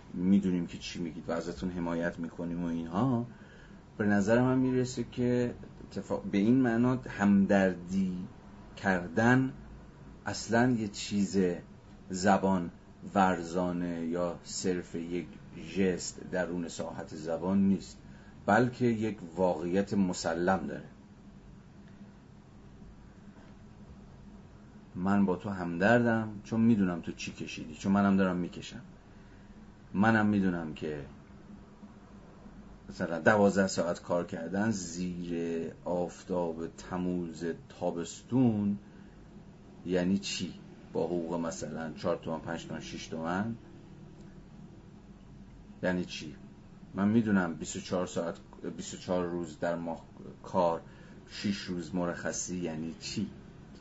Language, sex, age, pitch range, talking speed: Persian, male, 40-59, 85-105 Hz, 100 wpm